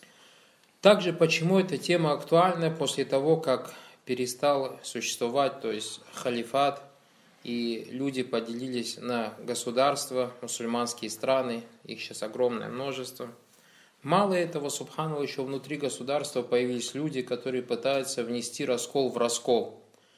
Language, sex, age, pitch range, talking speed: Russian, male, 20-39, 120-145 Hz, 115 wpm